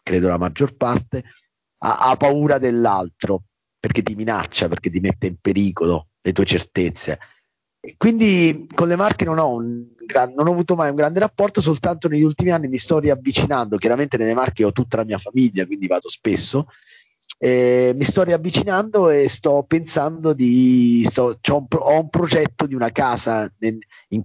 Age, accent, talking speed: 30-49, native, 160 wpm